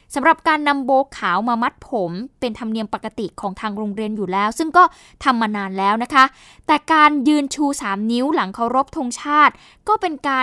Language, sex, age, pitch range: Thai, female, 10-29, 220-280 Hz